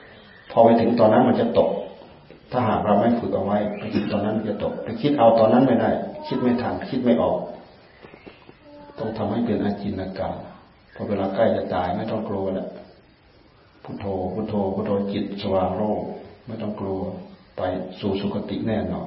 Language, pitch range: Thai, 95-105 Hz